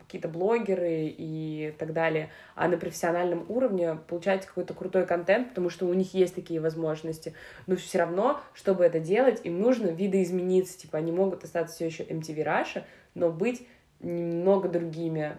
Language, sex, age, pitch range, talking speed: Russian, female, 20-39, 165-190 Hz, 160 wpm